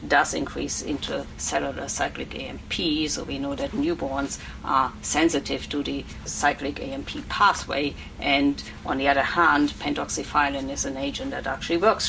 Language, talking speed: English, 145 wpm